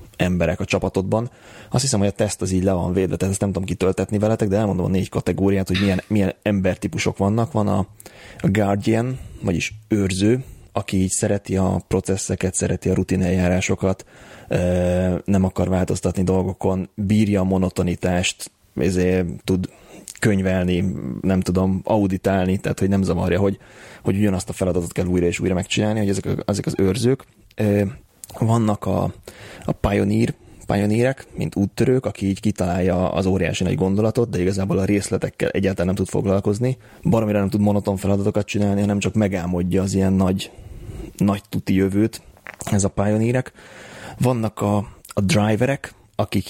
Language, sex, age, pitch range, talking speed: Hungarian, male, 30-49, 95-105 Hz, 155 wpm